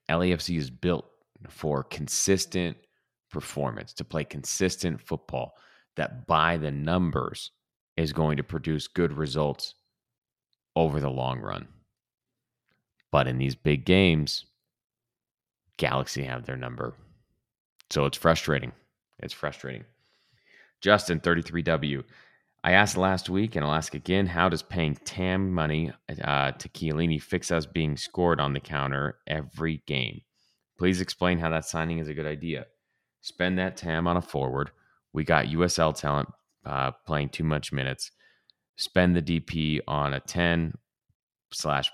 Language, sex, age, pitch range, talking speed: English, male, 30-49, 70-85 Hz, 135 wpm